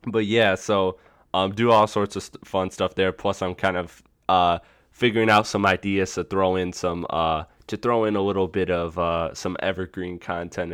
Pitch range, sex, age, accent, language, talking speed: 85-95 Hz, male, 20-39, American, English, 205 wpm